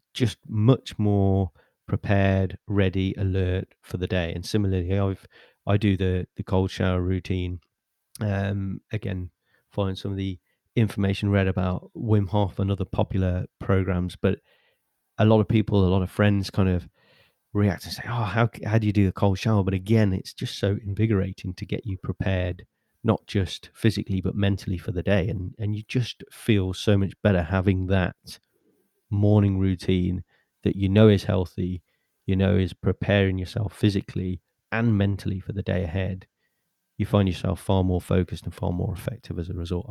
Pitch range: 95-105 Hz